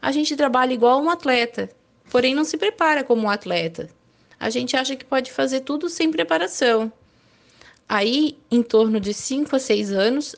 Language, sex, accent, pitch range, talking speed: Portuguese, female, Brazilian, 210-285 Hz, 175 wpm